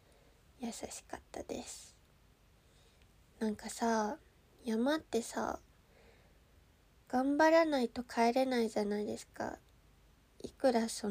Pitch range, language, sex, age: 220-275 Hz, Japanese, female, 20-39